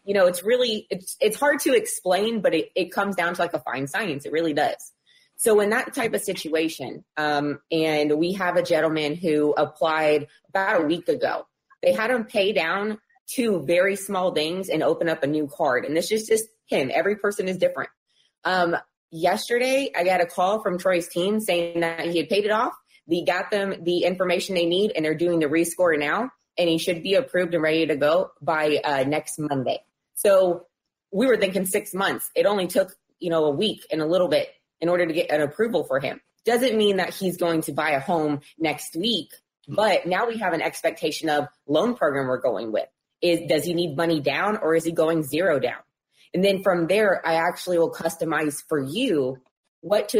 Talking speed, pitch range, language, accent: 215 wpm, 155-195 Hz, English, American